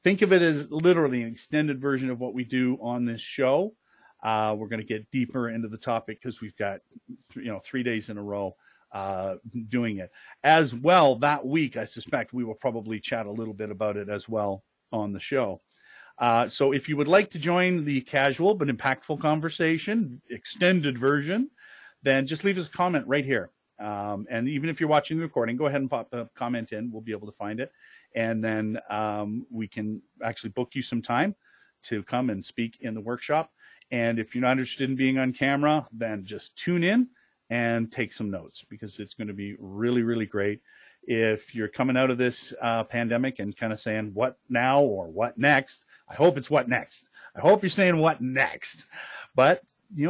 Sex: male